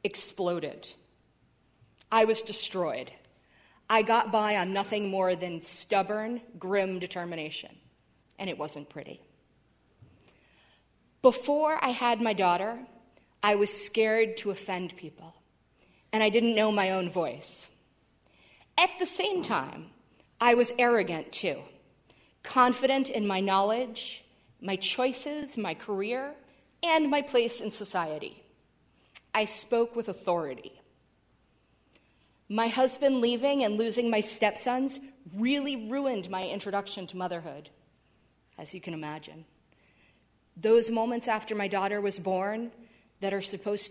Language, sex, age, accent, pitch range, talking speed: English, female, 40-59, American, 180-230 Hz, 120 wpm